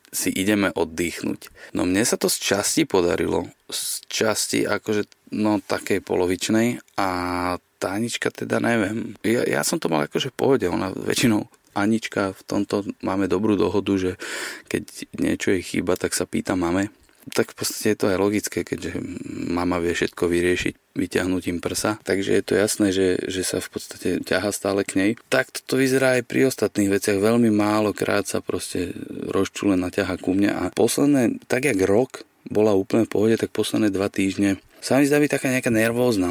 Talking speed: 175 wpm